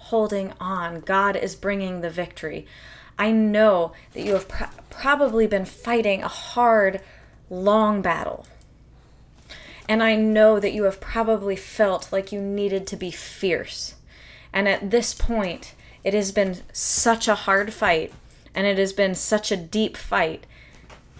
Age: 20-39